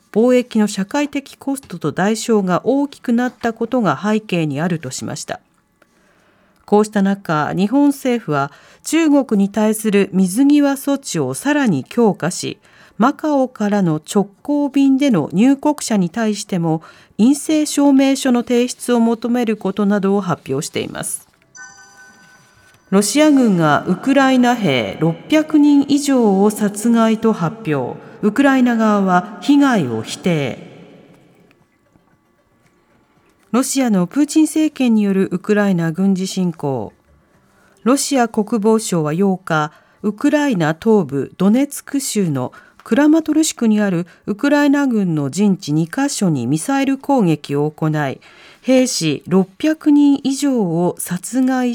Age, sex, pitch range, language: 40-59, female, 180-270 Hz, Japanese